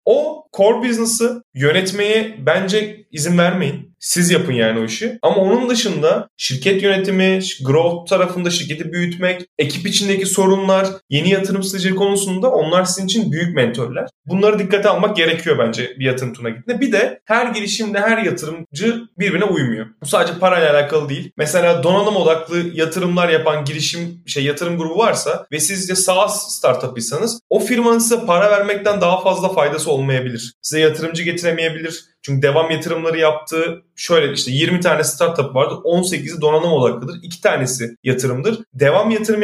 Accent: native